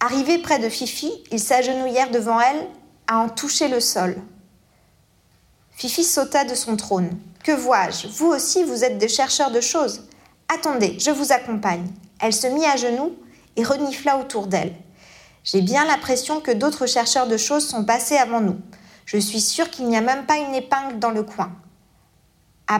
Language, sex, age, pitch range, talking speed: French, female, 40-59, 225-280 Hz, 175 wpm